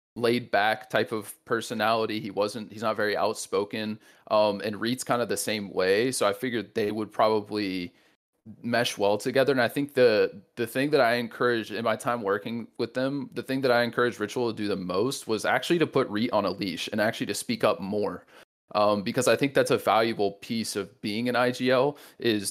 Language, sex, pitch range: English, male, 100-125 Hz